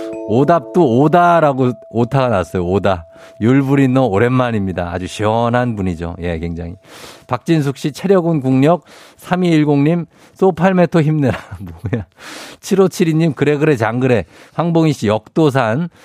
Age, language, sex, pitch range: 50-69, Korean, male, 105-150 Hz